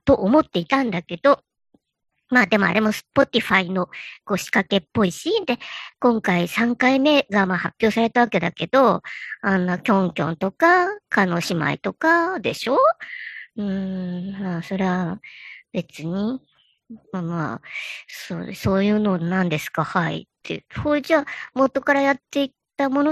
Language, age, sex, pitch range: Japanese, 50-69, male, 205-295 Hz